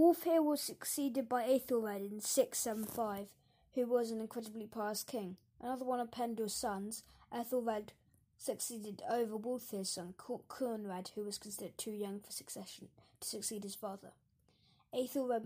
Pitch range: 205-240 Hz